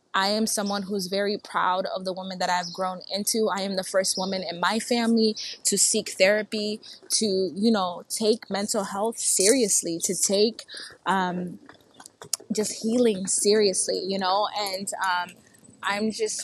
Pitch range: 185-220 Hz